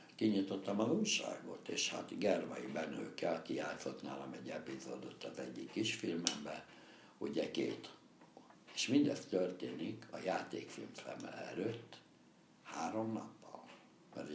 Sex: male